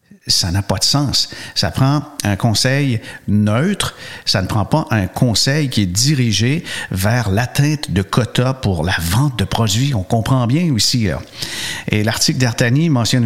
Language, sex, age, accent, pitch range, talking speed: French, male, 50-69, Canadian, 105-135 Hz, 165 wpm